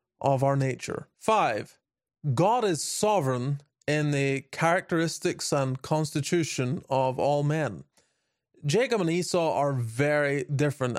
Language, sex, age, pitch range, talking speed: English, male, 20-39, 135-170 Hz, 115 wpm